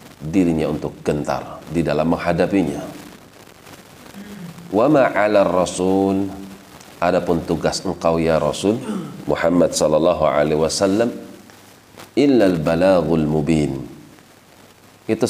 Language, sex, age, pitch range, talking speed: Indonesian, male, 40-59, 75-95 Hz, 85 wpm